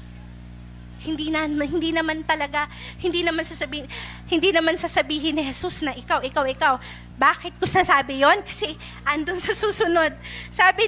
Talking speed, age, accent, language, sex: 145 wpm, 20-39, native, Filipino, female